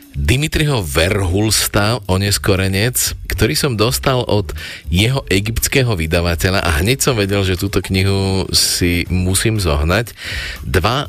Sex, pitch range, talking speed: male, 85-105 Hz, 115 wpm